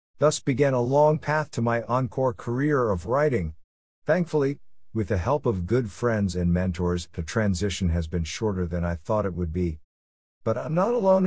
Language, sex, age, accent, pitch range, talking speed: English, male, 50-69, American, 90-115 Hz, 185 wpm